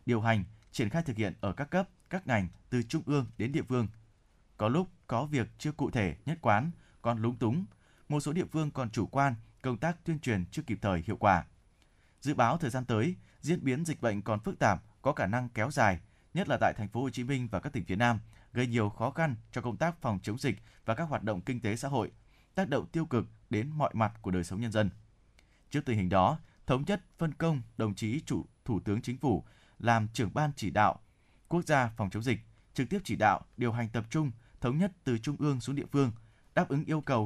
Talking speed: 240 wpm